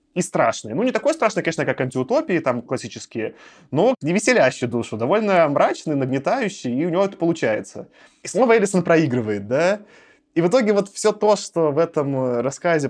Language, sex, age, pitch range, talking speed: Russian, male, 20-39, 135-225 Hz, 170 wpm